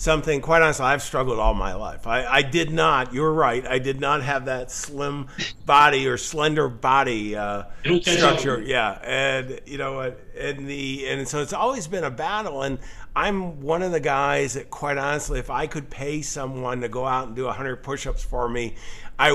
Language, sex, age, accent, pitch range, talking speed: English, male, 50-69, American, 115-145 Hz, 195 wpm